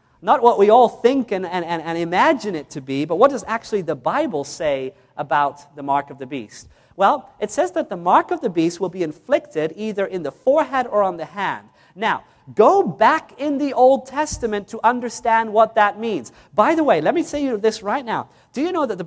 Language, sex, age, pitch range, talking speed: English, male, 40-59, 175-260 Hz, 225 wpm